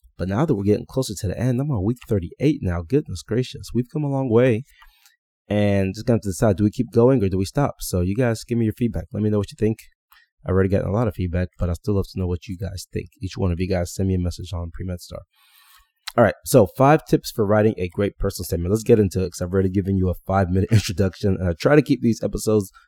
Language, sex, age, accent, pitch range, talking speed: English, male, 20-39, American, 95-130 Hz, 285 wpm